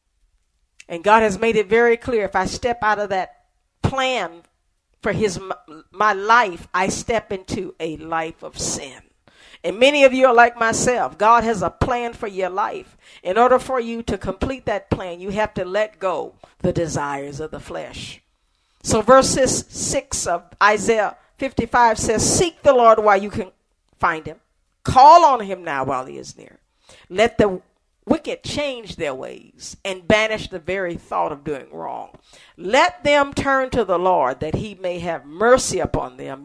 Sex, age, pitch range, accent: female, 50-69, 170-245 Hz, American